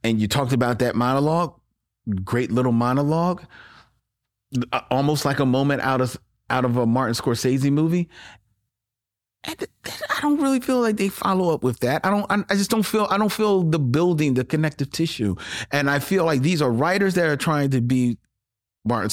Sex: male